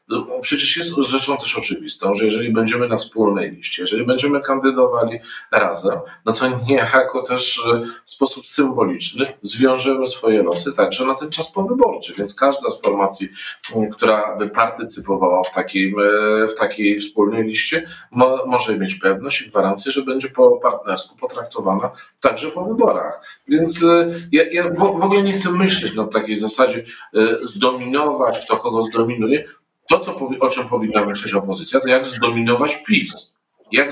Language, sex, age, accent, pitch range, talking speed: Polish, male, 40-59, native, 115-165 Hz, 150 wpm